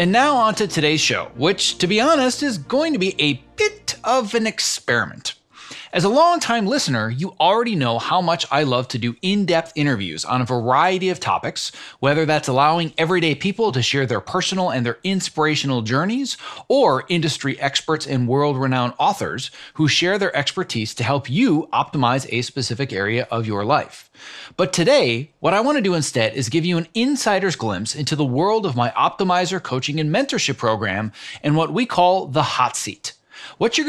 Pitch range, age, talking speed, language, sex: 130-190 Hz, 30-49, 180 wpm, English, male